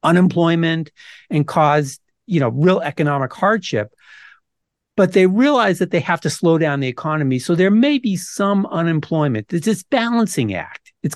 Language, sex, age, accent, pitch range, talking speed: English, male, 50-69, American, 140-185 Hz, 160 wpm